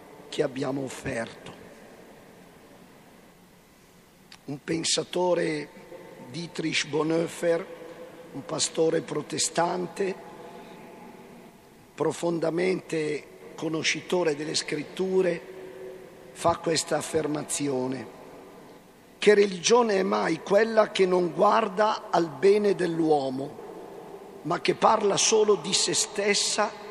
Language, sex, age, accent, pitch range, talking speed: Italian, male, 50-69, native, 155-195 Hz, 80 wpm